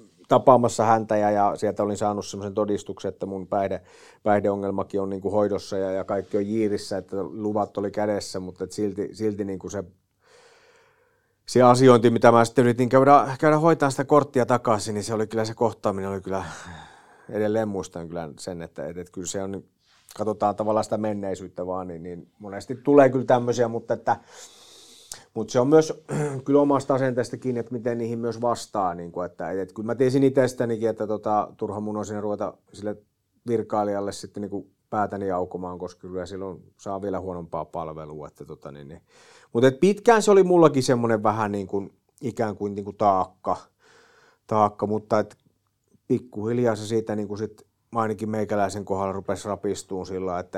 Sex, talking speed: male, 180 wpm